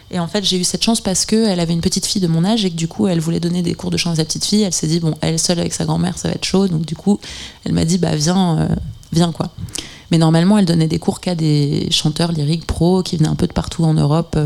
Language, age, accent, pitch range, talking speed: French, 20-39, French, 155-180 Hz, 305 wpm